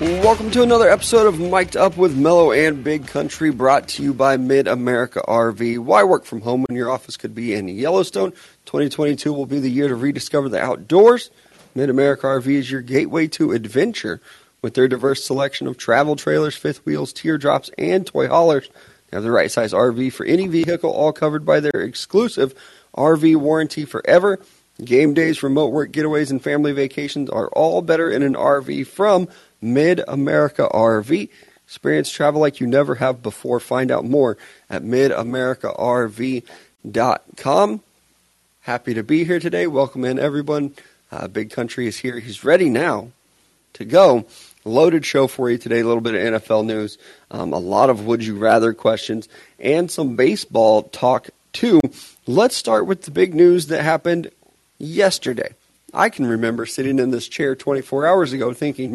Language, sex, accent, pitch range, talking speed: English, male, American, 120-155 Hz, 165 wpm